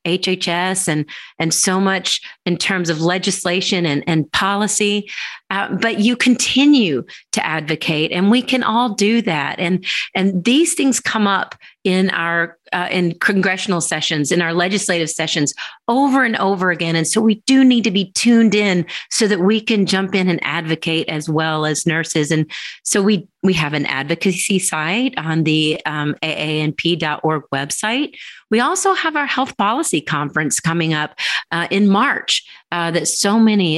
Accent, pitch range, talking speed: American, 165-210 Hz, 165 wpm